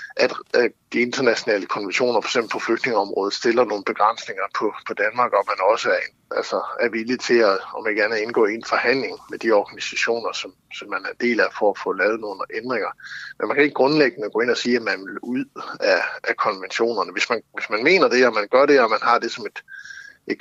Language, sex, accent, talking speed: Danish, male, native, 220 wpm